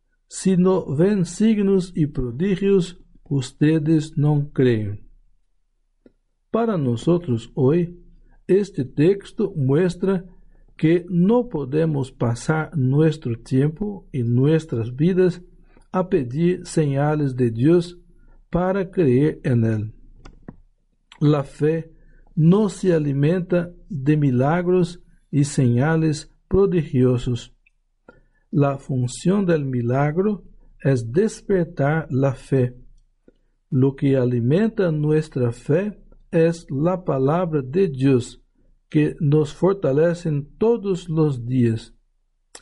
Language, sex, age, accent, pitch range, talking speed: Spanish, male, 60-79, Brazilian, 135-180 Hz, 95 wpm